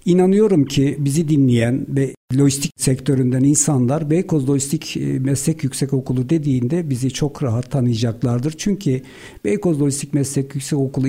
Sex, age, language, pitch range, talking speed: male, 60-79, Turkish, 130-155 Hz, 130 wpm